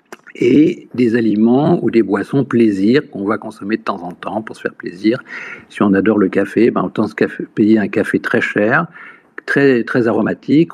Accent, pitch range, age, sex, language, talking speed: French, 110-160 Hz, 50-69, male, French, 195 wpm